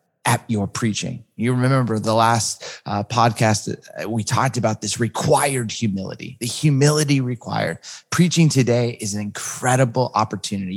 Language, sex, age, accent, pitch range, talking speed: English, male, 30-49, American, 110-140 Hz, 135 wpm